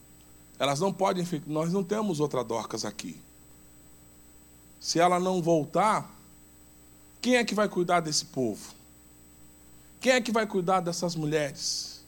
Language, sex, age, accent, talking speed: Portuguese, male, 20-39, Brazilian, 135 wpm